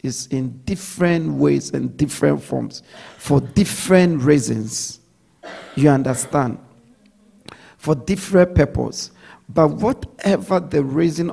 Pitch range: 130-170 Hz